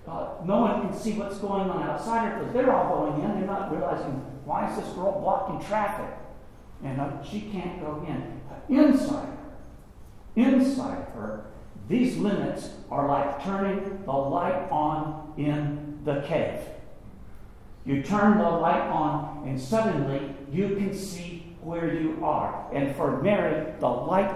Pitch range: 140-195 Hz